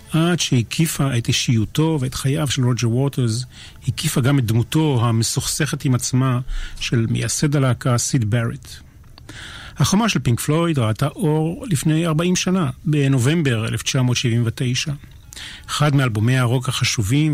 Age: 40-59